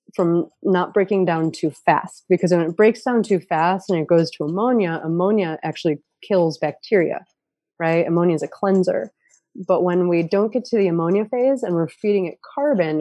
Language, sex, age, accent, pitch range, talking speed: English, female, 30-49, American, 165-200 Hz, 190 wpm